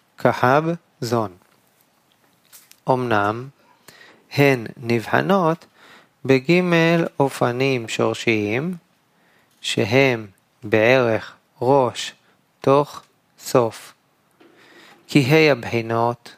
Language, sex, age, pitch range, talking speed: Hebrew, male, 30-49, 115-135 Hz, 60 wpm